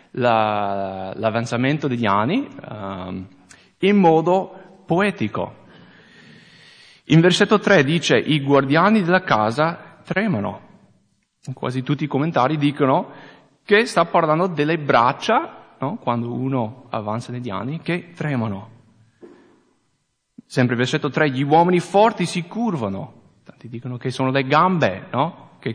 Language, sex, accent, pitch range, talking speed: English, male, Italian, 125-185 Hz, 110 wpm